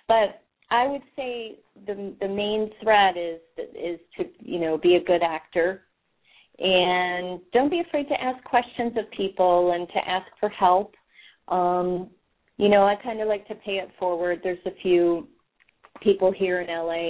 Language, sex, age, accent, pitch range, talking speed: English, female, 30-49, American, 170-225 Hz, 175 wpm